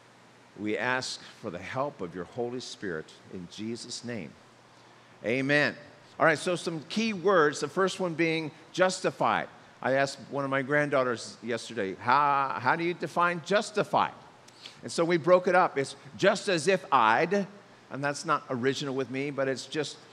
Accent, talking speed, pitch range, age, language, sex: American, 170 wpm, 140-195 Hz, 50-69, English, male